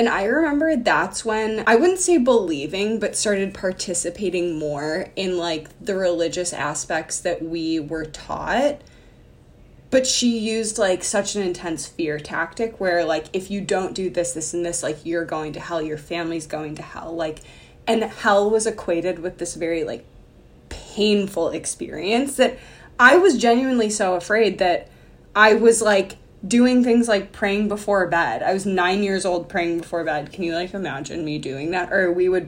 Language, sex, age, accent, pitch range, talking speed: English, female, 20-39, American, 165-215 Hz, 175 wpm